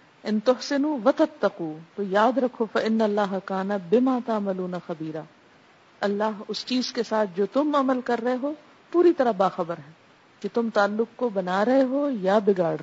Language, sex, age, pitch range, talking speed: Urdu, female, 50-69, 205-270 Hz, 175 wpm